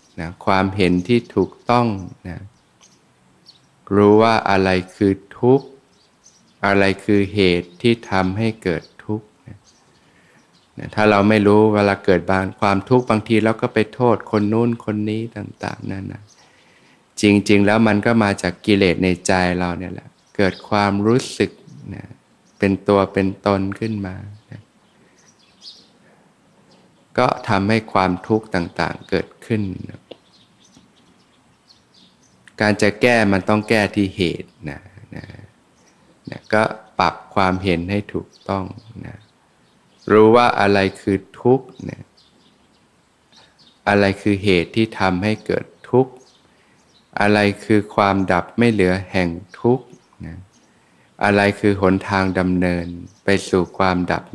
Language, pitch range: Thai, 95-110 Hz